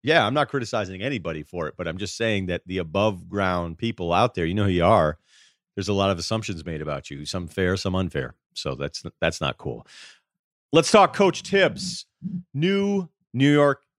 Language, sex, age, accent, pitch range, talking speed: English, male, 40-59, American, 85-125 Hz, 200 wpm